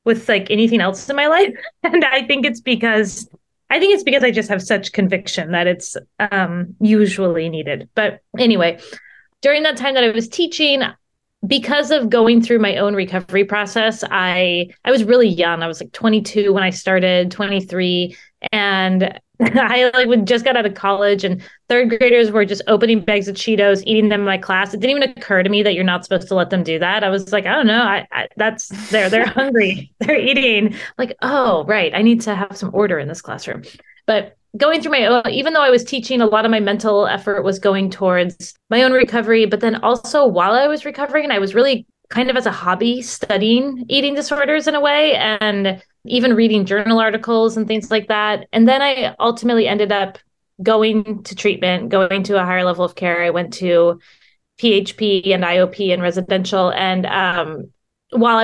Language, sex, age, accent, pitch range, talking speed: English, female, 20-39, American, 195-245 Hz, 205 wpm